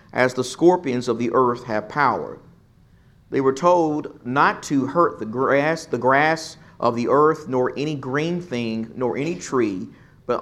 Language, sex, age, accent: English, male, 40-59, American